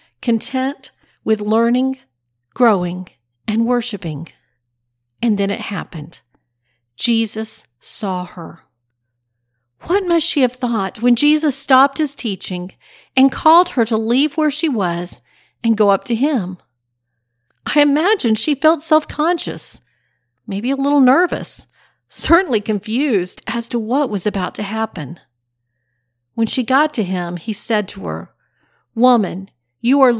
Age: 50-69